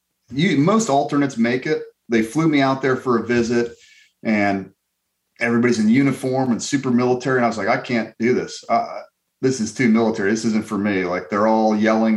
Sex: male